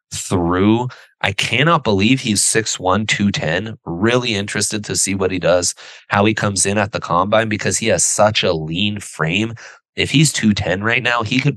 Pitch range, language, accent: 85-110 Hz, English, American